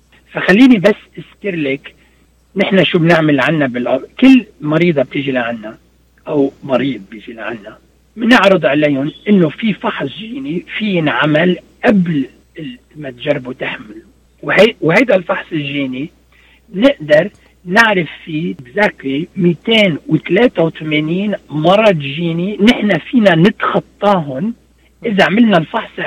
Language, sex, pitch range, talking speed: Arabic, male, 145-200 Hz, 105 wpm